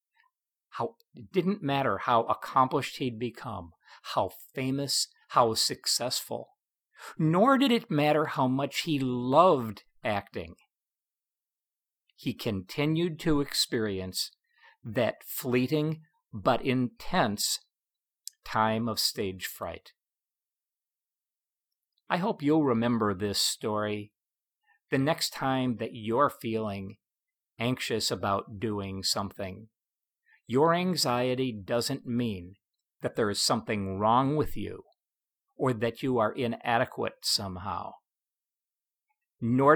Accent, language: American, English